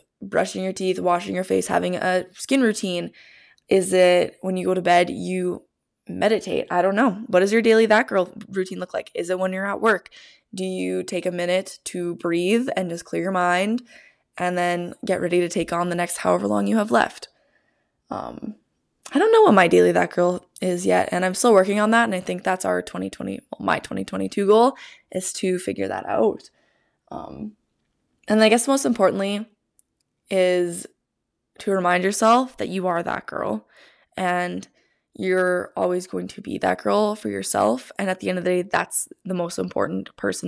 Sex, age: female, 20-39